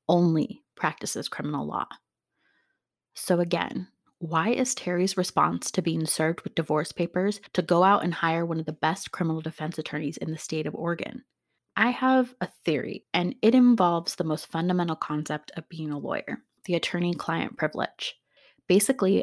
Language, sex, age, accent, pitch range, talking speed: English, female, 20-39, American, 160-200 Hz, 165 wpm